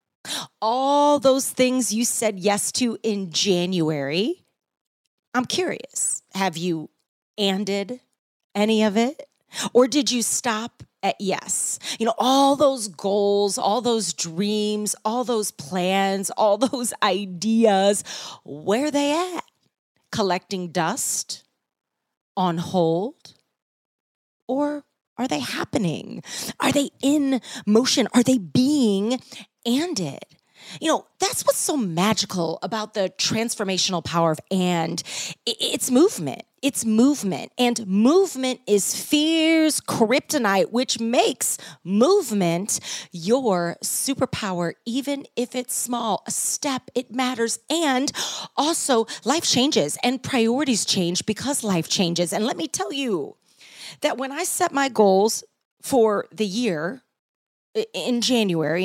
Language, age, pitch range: English, 30-49, 190-265 Hz